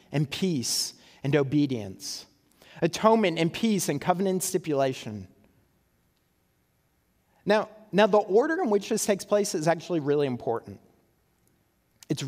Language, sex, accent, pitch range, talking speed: English, male, American, 165-225 Hz, 115 wpm